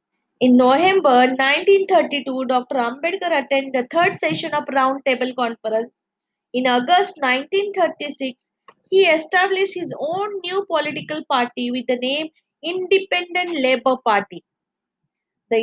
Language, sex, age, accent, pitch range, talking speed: English, female, 20-39, Indian, 250-335 Hz, 115 wpm